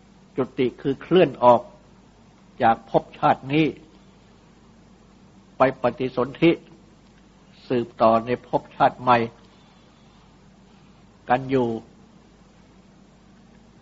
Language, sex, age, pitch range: Thai, male, 60-79, 120-165 Hz